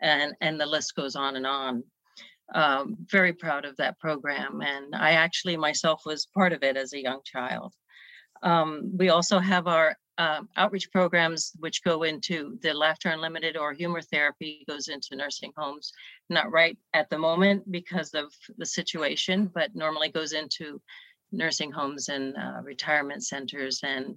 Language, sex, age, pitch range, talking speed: English, female, 40-59, 145-175 Hz, 165 wpm